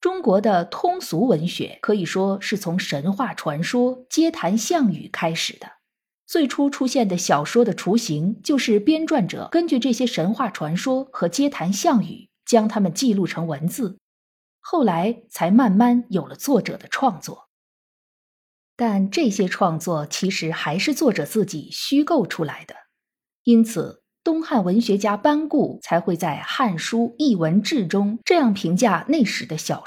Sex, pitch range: female, 180-260 Hz